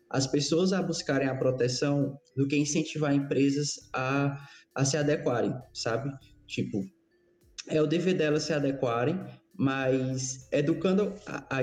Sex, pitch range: male, 130-165 Hz